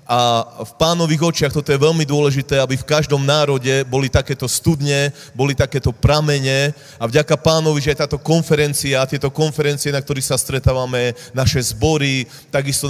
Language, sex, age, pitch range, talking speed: Slovak, male, 30-49, 125-150 Hz, 160 wpm